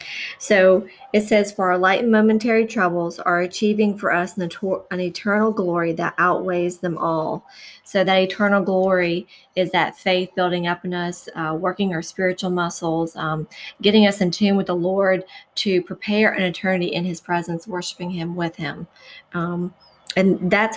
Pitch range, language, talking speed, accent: 175-205 Hz, English, 170 wpm, American